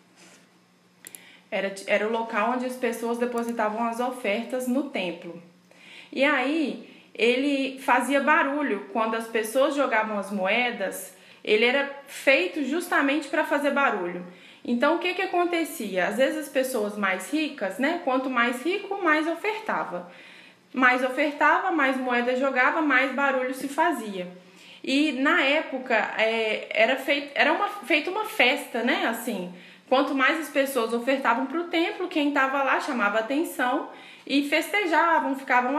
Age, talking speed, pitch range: 20-39, 145 wpm, 235-300 Hz